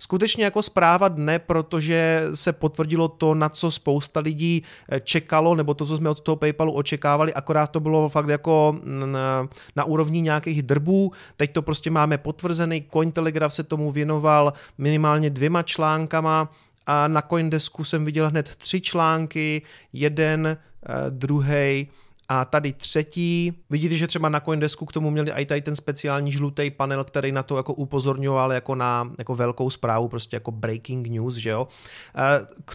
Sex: male